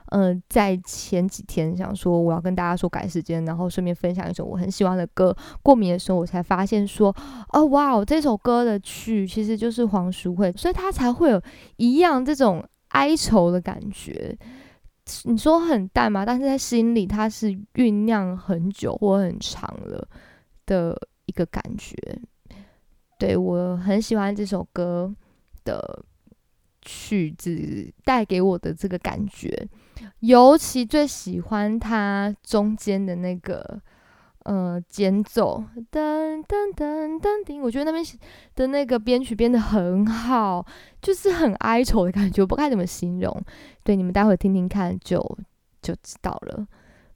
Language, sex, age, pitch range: Chinese, female, 20-39, 185-240 Hz